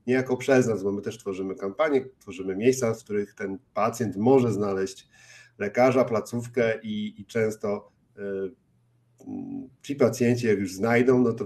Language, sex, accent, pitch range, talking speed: Polish, male, native, 105-130 Hz, 145 wpm